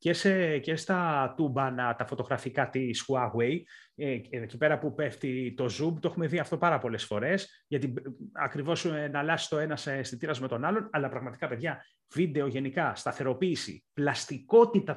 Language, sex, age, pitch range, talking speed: Greek, male, 30-49, 130-175 Hz, 165 wpm